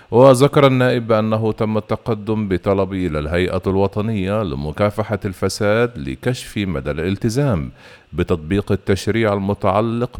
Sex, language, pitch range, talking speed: male, Arabic, 90-115 Hz, 100 wpm